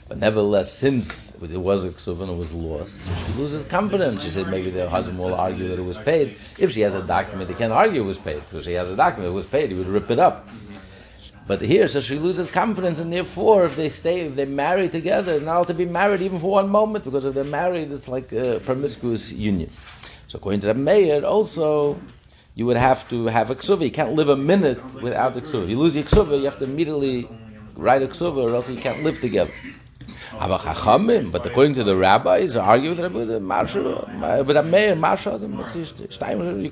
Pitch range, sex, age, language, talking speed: 100-155 Hz, male, 60-79, English, 205 wpm